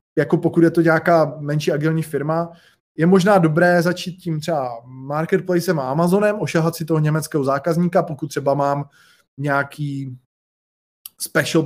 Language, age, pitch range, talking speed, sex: Slovak, 20-39, 145-165 Hz, 140 wpm, male